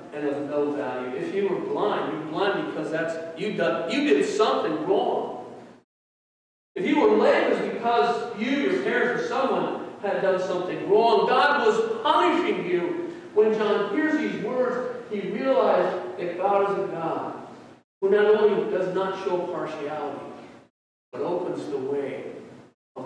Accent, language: American, English